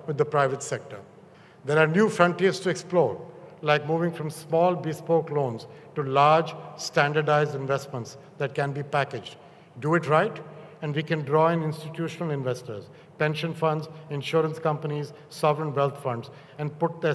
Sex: male